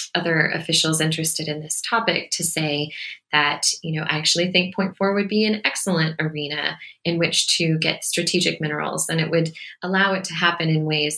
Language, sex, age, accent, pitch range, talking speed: English, female, 20-39, American, 155-175 Hz, 195 wpm